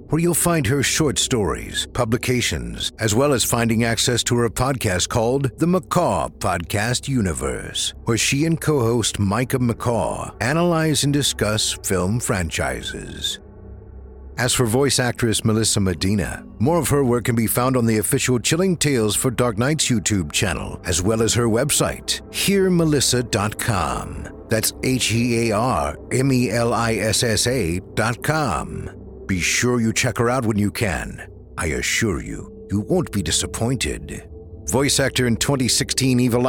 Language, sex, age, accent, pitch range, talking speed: English, male, 60-79, American, 100-130 Hz, 135 wpm